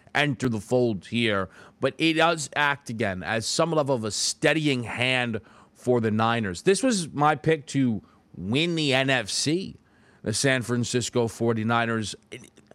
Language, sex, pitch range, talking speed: English, male, 120-185 Hz, 145 wpm